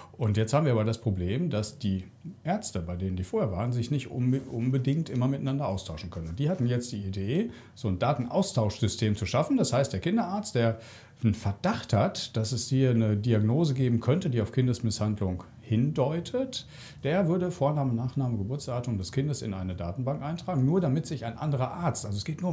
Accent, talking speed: German, 190 wpm